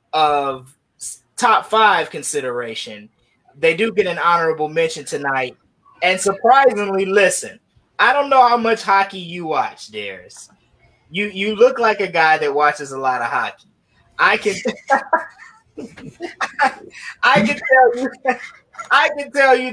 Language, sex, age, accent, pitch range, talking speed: English, male, 20-39, American, 165-250 Hz, 140 wpm